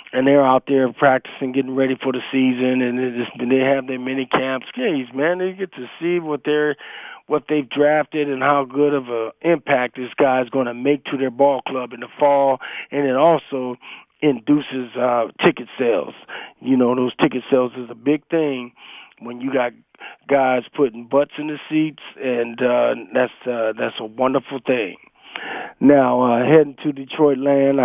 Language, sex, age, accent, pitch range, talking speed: English, male, 40-59, American, 120-140 Hz, 180 wpm